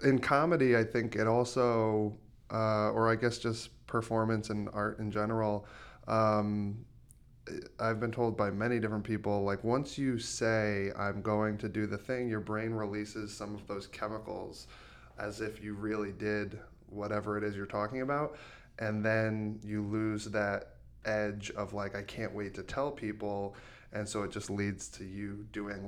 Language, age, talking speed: English, 10-29, 170 wpm